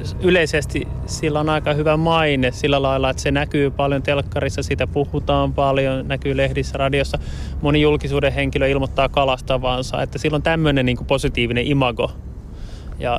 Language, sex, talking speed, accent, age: Finnish, male, 145 wpm, native, 20-39